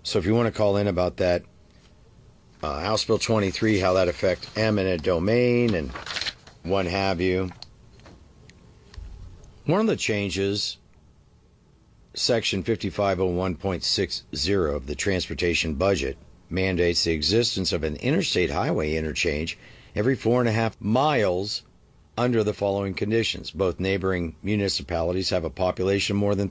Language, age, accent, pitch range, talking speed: English, 50-69, American, 85-110 Hz, 135 wpm